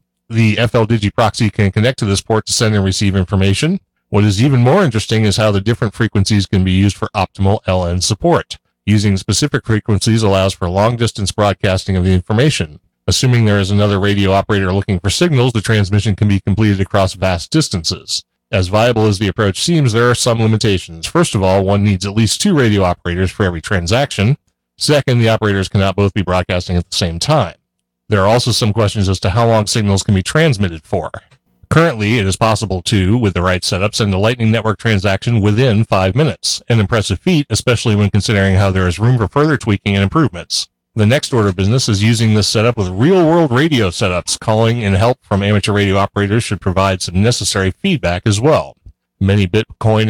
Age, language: 40-59, English